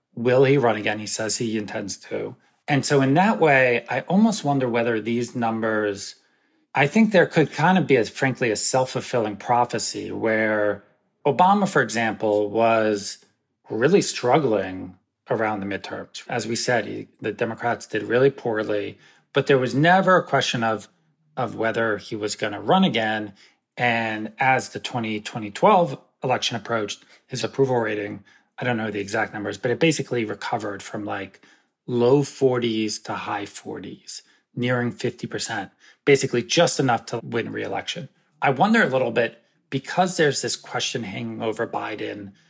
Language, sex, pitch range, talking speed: English, male, 110-135 Hz, 155 wpm